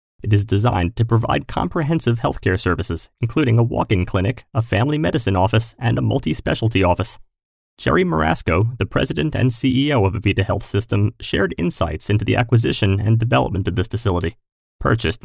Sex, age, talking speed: male, 30-49, 160 wpm